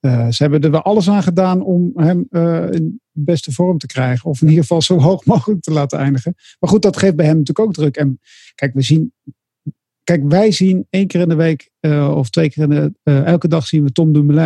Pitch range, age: 145-180 Hz, 50-69